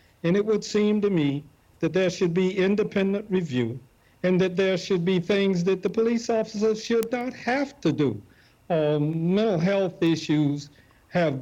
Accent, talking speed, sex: American, 170 wpm, male